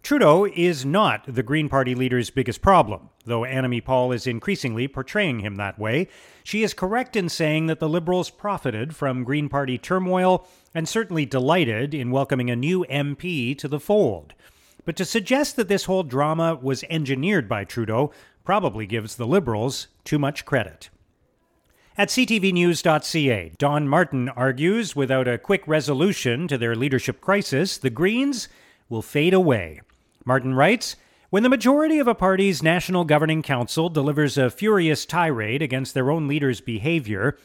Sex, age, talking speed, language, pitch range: male, 40-59, 155 wpm, English, 130-180 Hz